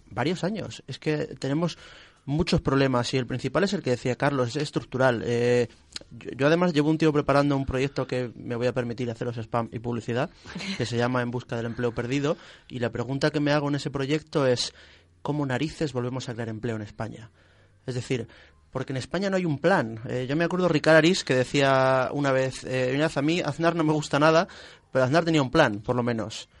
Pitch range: 125-155 Hz